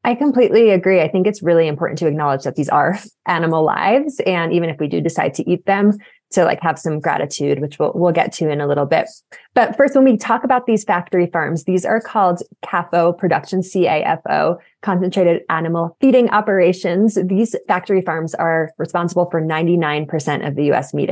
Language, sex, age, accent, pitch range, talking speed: English, female, 20-39, American, 160-200 Hz, 195 wpm